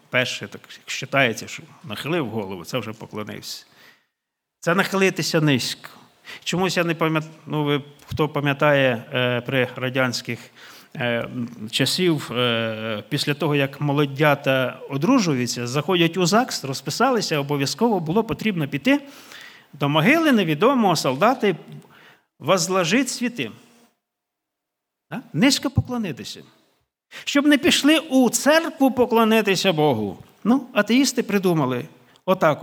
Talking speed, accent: 100 wpm, native